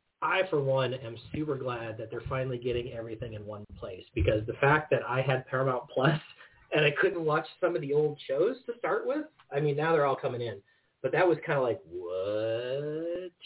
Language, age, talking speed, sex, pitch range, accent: English, 30-49, 215 wpm, male, 115-150 Hz, American